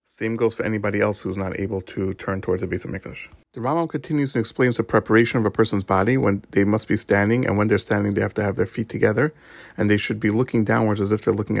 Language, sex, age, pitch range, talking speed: English, male, 40-59, 100-120 Hz, 270 wpm